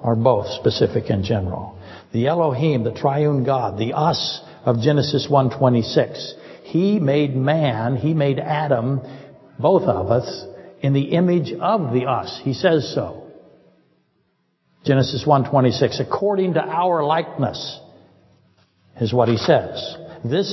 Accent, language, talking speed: American, English, 140 wpm